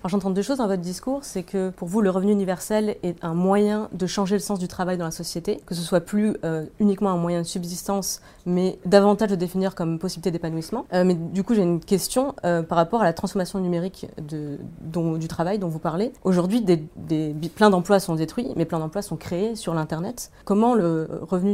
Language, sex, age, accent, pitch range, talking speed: French, female, 30-49, French, 165-205 Hz, 225 wpm